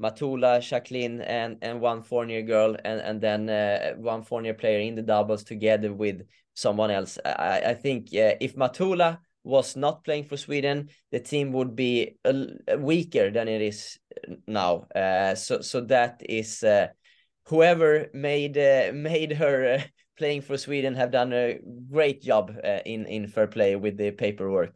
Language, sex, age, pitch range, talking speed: English, male, 20-39, 110-145 Hz, 170 wpm